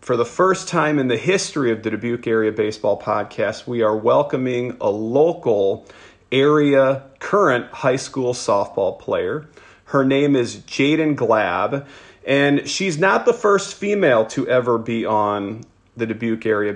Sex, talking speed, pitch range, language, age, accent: male, 150 wpm, 115-145 Hz, English, 40-59, American